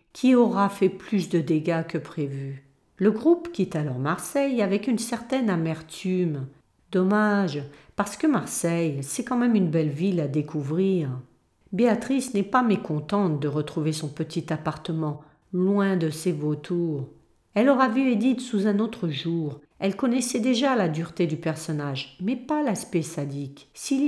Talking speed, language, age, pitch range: 155 wpm, French, 50-69, 155-215 Hz